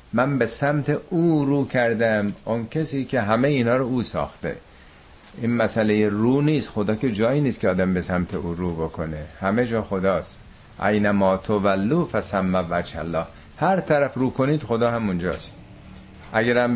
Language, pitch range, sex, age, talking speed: Persian, 95-120 Hz, male, 50-69, 145 wpm